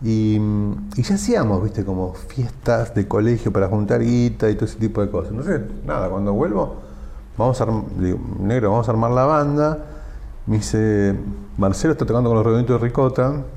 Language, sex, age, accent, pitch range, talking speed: Spanish, male, 40-59, Argentinian, 90-115 Hz, 190 wpm